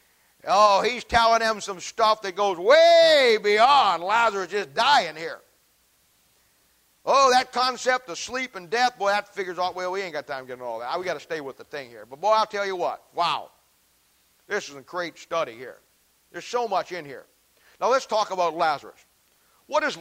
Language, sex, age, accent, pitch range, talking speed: English, male, 50-69, American, 160-220 Hz, 205 wpm